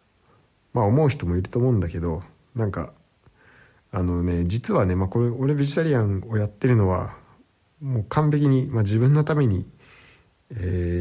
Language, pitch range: Japanese, 95-130 Hz